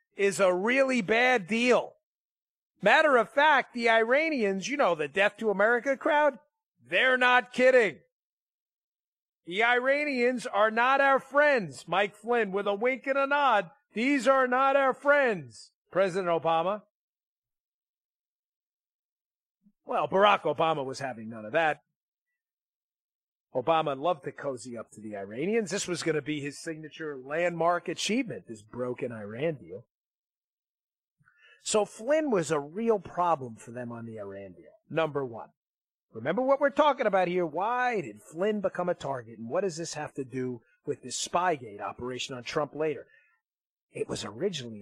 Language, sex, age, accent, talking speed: English, male, 40-59, American, 150 wpm